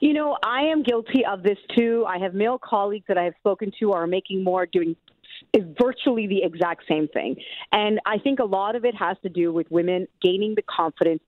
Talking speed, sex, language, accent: 230 wpm, female, English, American